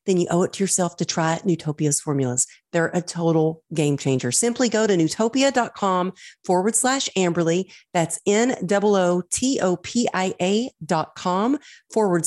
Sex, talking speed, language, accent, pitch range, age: female, 135 wpm, English, American, 155-215 Hz, 40-59